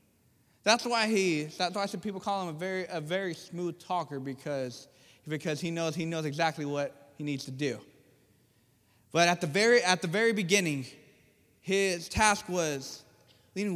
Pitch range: 160-240 Hz